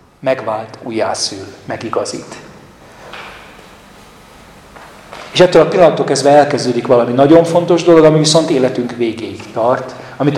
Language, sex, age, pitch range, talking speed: Hungarian, male, 40-59, 120-155 Hz, 105 wpm